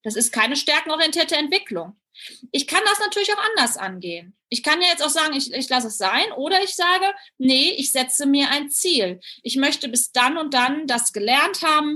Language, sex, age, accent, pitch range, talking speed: German, female, 30-49, German, 230-300 Hz, 205 wpm